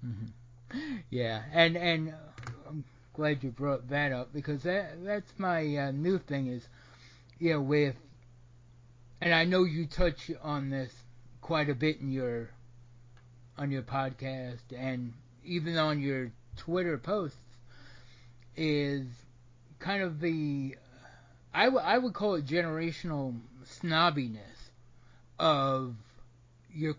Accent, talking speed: American, 125 wpm